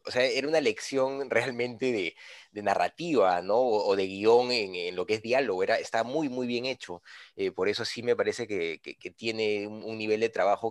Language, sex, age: Spanish, male, 20-39